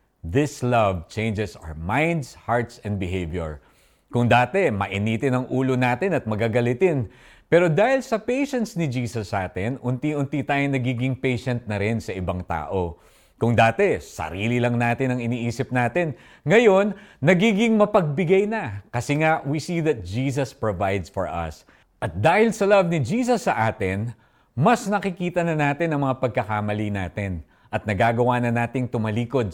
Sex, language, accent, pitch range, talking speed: male, Filipino, native, 100-150 Hz, 150 wpm